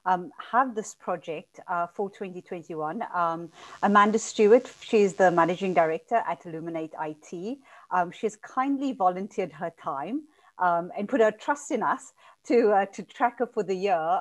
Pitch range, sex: 170-220 Hz, female